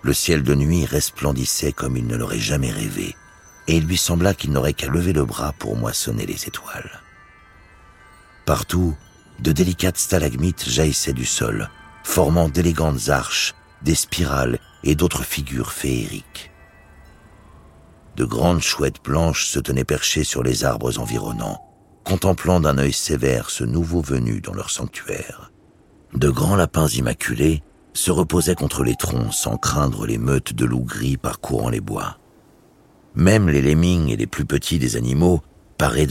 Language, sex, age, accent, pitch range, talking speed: French, male, 60-79, French, 70-90 Hz, 150 wpm